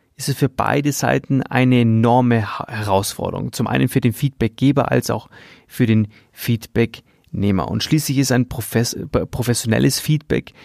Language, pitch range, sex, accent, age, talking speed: German, 115-140 Hz, male, German, 30-49, 135 wpm